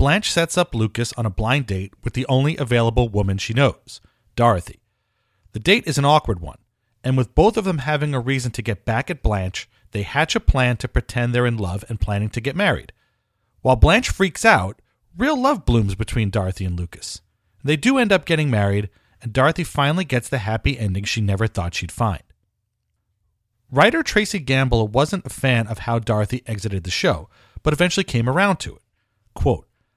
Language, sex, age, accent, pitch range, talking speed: English, male, 40-59, American, 105-140 Hz, 195 wpm